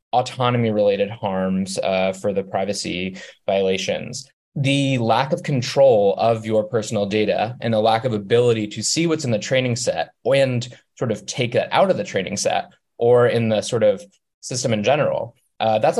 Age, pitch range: 20-39, 105-130 Hz